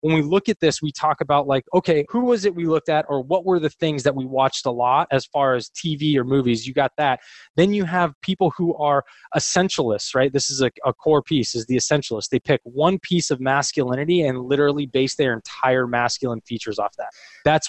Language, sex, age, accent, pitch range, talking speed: English, male, 20-39, American, 130-160 Hz, 230 wpm